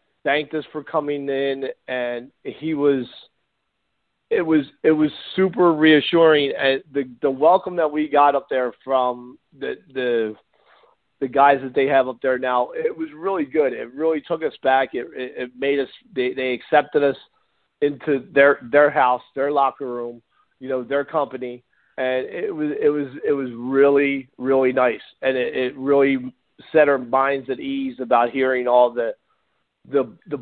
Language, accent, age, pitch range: English, American, 40-59, 130-150 Hz